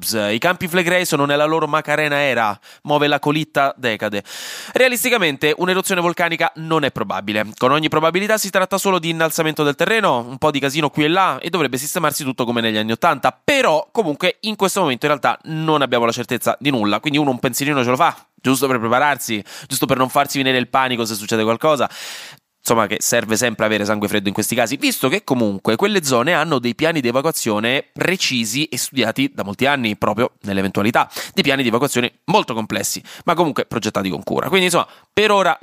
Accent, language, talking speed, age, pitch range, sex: native, Italian, 200 wpm, 20-39, 115-160 Hz, male